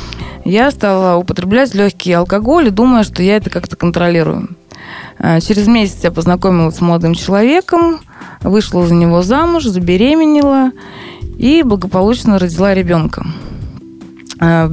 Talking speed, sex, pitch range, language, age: 120 wpm, female, 170-220 Hz, Russian, 20-39